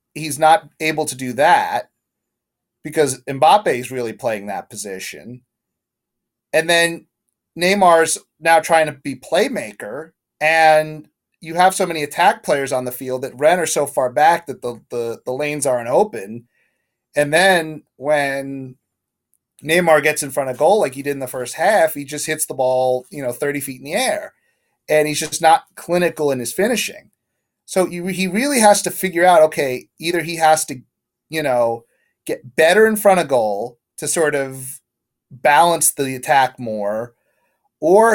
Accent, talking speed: American, 170 wpm